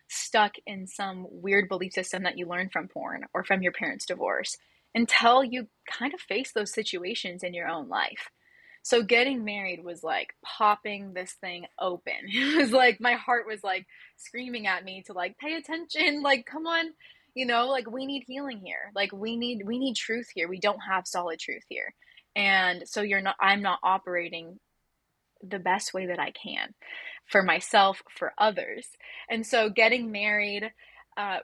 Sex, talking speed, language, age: female, 180 wpm, English, 20-39